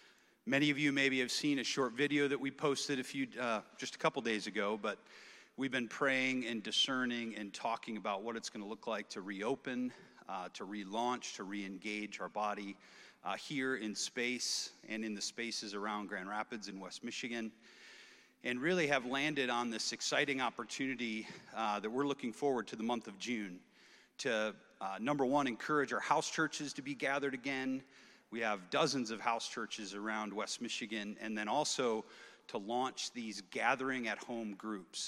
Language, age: English, 40-59